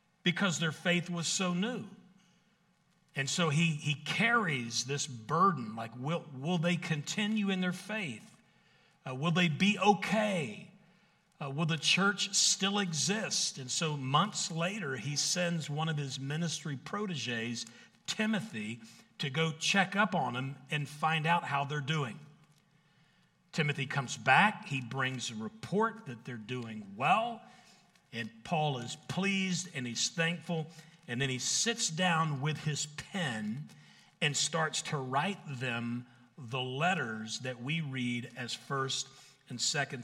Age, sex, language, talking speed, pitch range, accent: 50-69, male, English, 145 wpm, 135-185 Hz, American